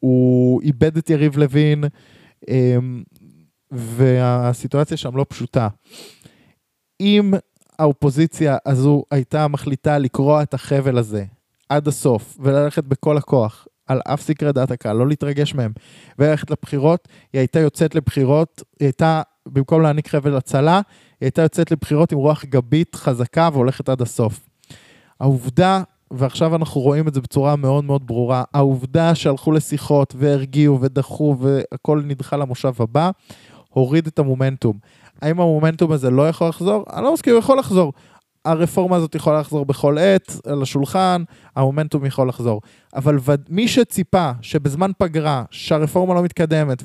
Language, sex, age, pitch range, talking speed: Hebrew, male, 20-39, 130-160 Hz, 135 wpm